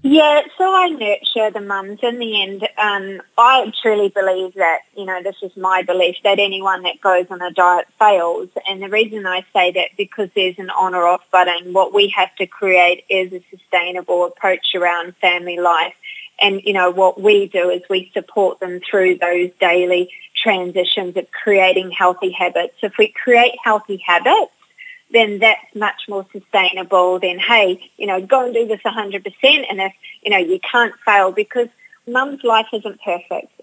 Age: 20-39